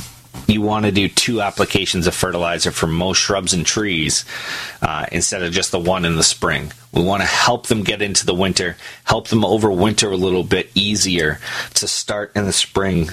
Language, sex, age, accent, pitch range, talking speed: English, male, 30-49, American, 90-110 Hz, 195 wpm